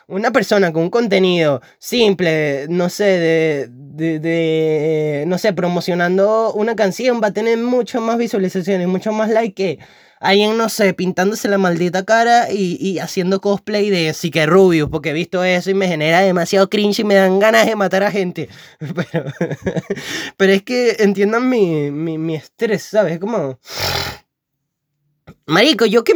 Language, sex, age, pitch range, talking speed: Spanish, male, 20-39, 160-215 Hz, 165 wpm